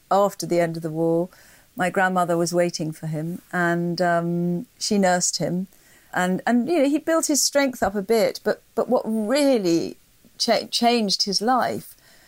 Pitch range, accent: 175-210 Hz, British